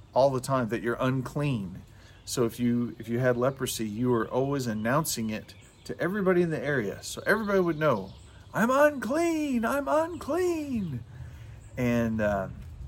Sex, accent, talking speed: male, American, 150 wpm